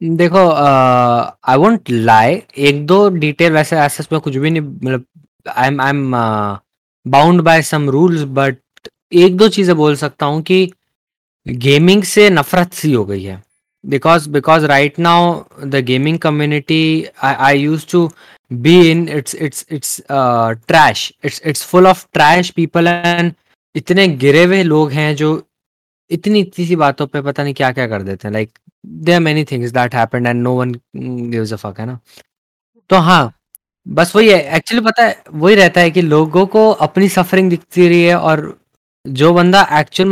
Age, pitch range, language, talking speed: 20-39, 130-175 Hz, Hindi, 150 wpm